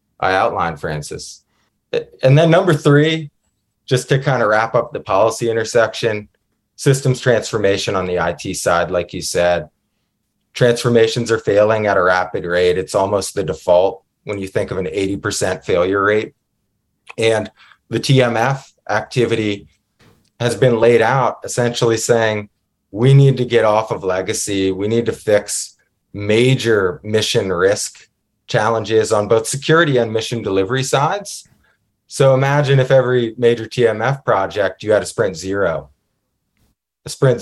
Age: 20-39